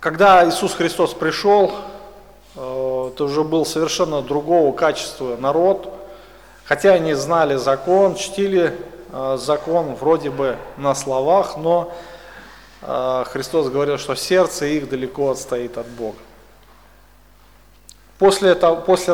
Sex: male